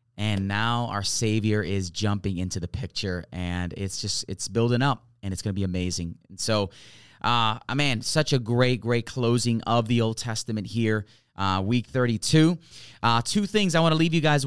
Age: 20-39